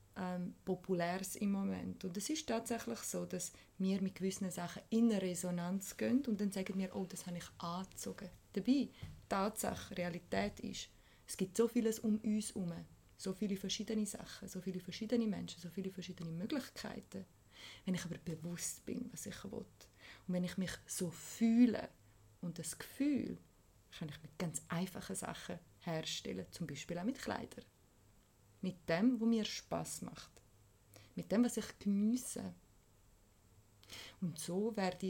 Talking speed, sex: 160 wpm, female